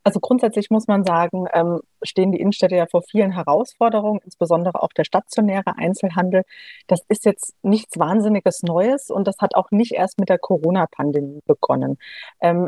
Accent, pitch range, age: German, 175-210 Hz, 30-49